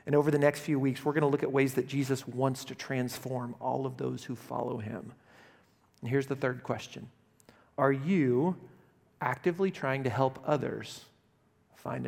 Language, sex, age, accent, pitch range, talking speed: English, male, 40-59, American, 125-145 Hz, 180 wpm